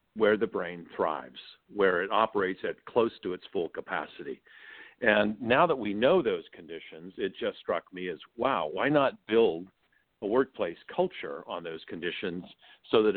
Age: 50-69